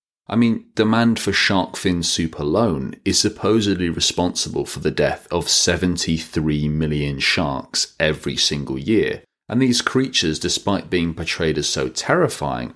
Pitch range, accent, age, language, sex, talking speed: 80-95 Hz, British, 30-49, English, male, 140 wpm